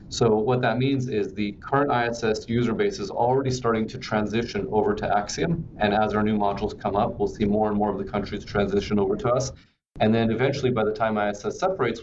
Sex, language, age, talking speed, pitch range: male, English, 30-49, 225 wpm, 100-115 Hz